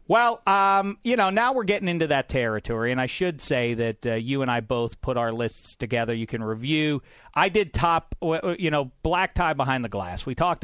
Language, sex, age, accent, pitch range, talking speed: English, male, 40-59, American, 115-175 Hz, 220 wpm